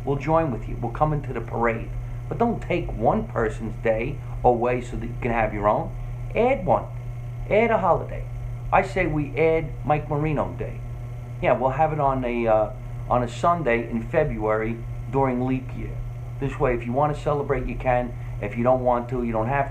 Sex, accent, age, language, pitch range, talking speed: male, American, 40-59, English, 115-130 Hz, 200 wpm